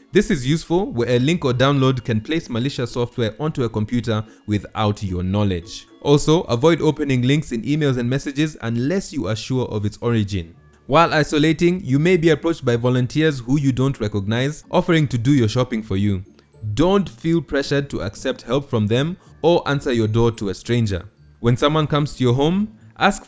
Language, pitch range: English, 110-150 Hz